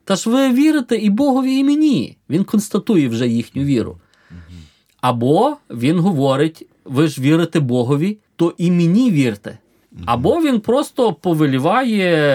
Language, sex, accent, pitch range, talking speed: Ukrainian, male, native, 115-170 Hz, 135 wpm